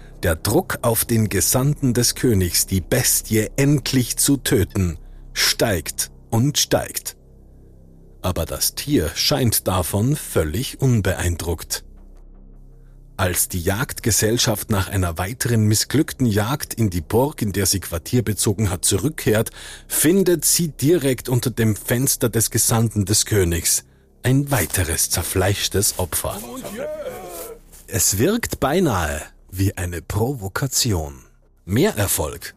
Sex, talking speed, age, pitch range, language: male, 110 wpm, 40-59, 95-135 Hz, German